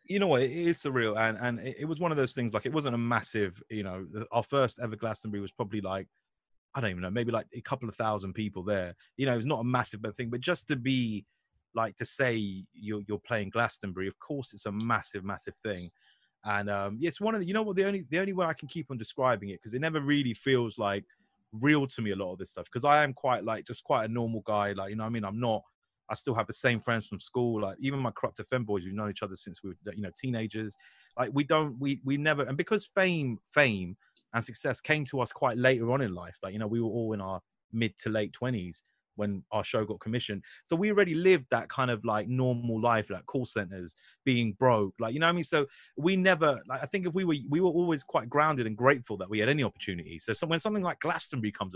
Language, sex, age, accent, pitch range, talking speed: English, male, 30-49, British, 105-140 Hz, 260 wpm